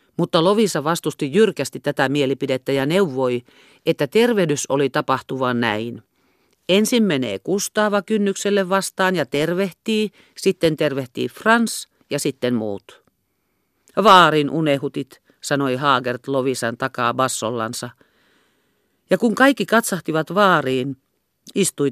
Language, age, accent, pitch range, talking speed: Finnish, 50-69, native, 130-185 Hz, 105 wpm